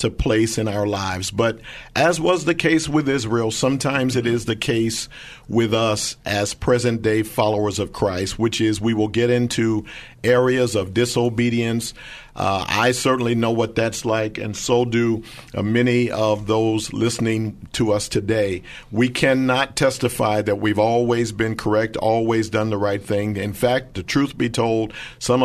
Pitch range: 110-125 Hz